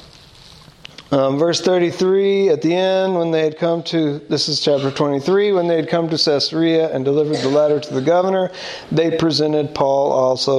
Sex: male